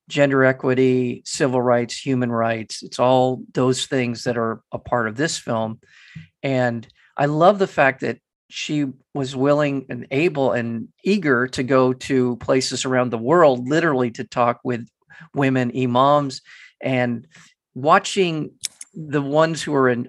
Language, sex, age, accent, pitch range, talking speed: English, male, 40-59, American, 125-155 Hz, 150 wpm